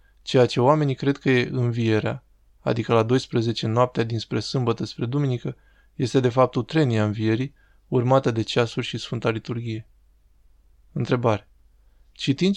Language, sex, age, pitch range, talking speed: Romanian, male, 20-39, 115-135 Hz, 135 wpm